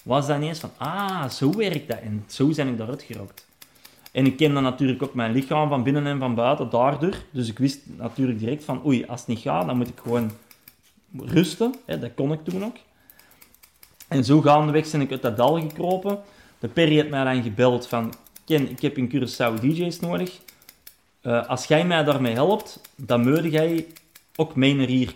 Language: Dutch